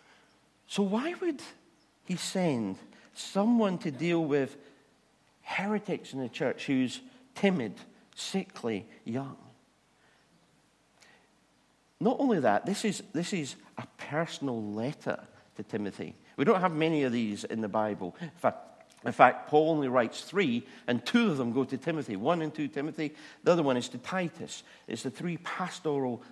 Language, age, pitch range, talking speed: English, 50-69, 120-195 Hz, 155 wpm